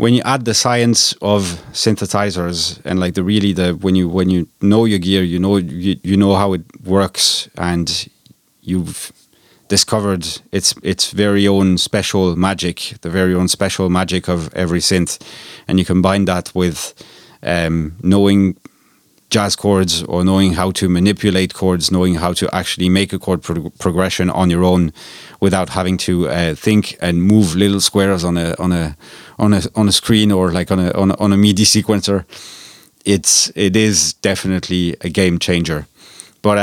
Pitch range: 90-105 Hz